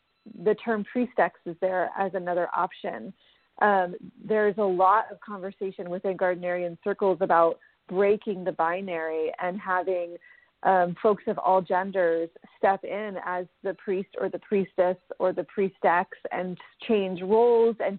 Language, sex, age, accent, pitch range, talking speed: English, female, 30-49, American, 180-215 Hz, 145 wpm